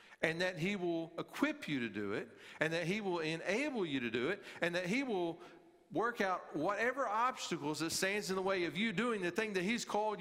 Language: English